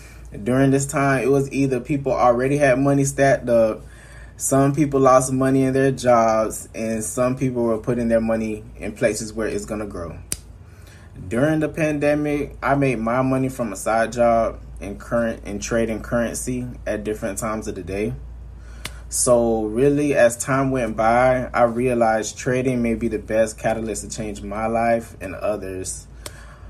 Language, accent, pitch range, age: English, American, 110-130 Hz, 20-39